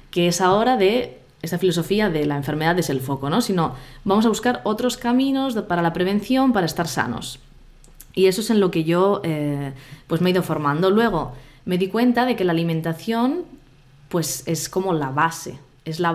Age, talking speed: 20-39, 200 wpm